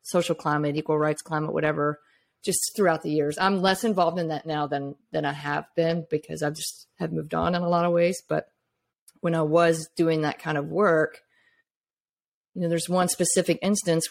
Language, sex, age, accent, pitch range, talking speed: English, female, 30-49, American, 155-185 Hz, 205 wpm